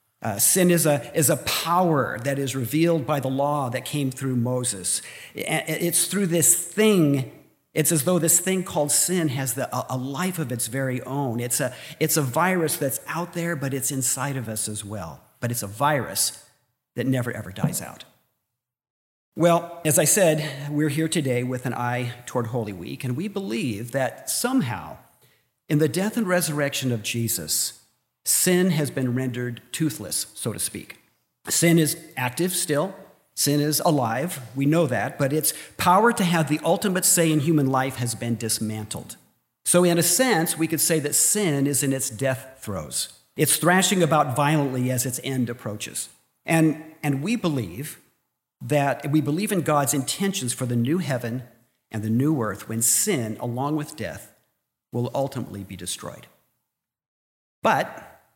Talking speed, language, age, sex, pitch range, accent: 175 wpm, English, 50-69, male, 125-160 Hz, American